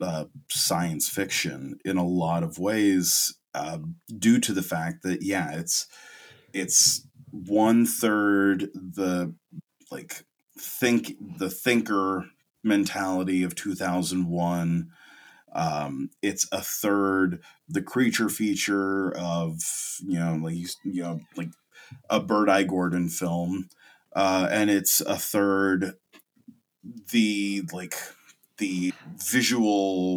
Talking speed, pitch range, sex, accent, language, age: 110 wpm, 85-100 Hz, male, American, English, 30-49